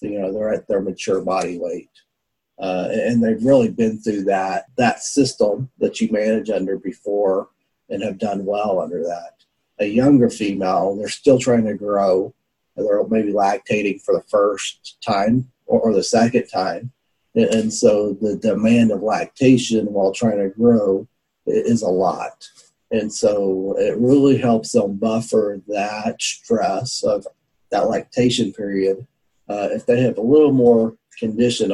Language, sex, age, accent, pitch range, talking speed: English, male, 40-59, American, 100-125 Hz, 155 wpm